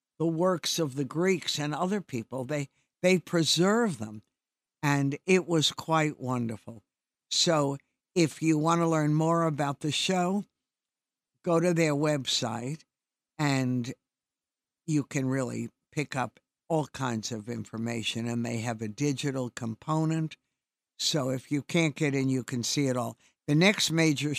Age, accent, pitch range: 60-79, American, 125-155 Hz